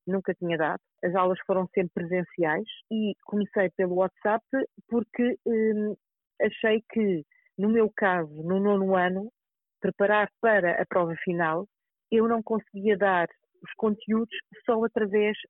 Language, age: Portuguese, 40-59